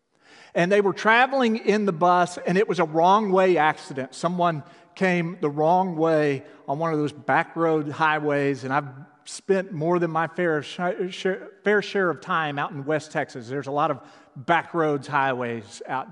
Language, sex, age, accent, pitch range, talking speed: English, male, 40-59, American, 140-185 Hz, 170 wpm